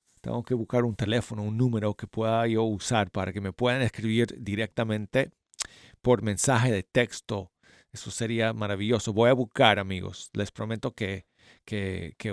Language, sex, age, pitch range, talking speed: Spanish, male, 40-59, 110-135 Hz, 155 wpm